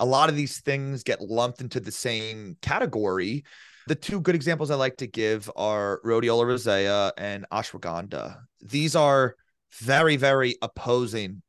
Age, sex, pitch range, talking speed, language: 30-49, male, 115-150 Hz, 150 wpm, English